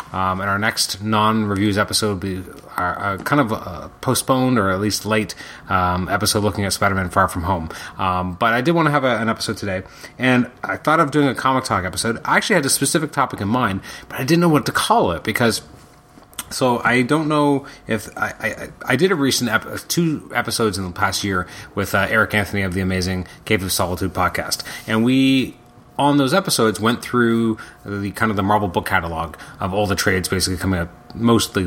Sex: male